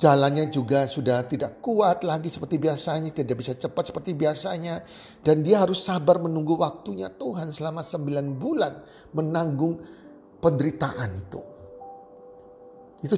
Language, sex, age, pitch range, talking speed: Indonesian, male, 40-59, 120-170 Hz, 125 wpm